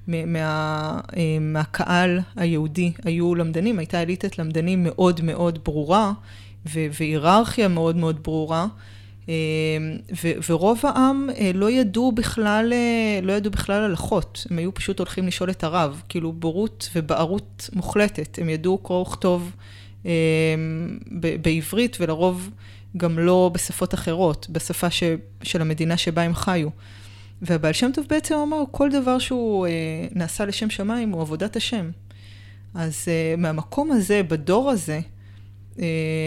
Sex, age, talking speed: female, 20-39, 125 wpm